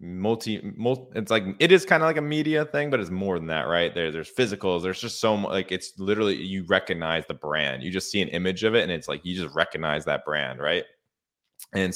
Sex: male